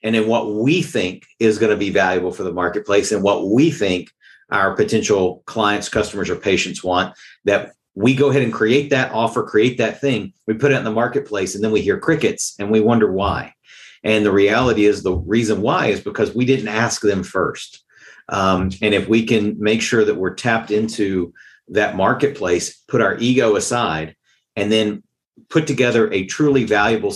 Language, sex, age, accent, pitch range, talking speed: English, male, 50-69, American, 100-120 Hz, 195 wpm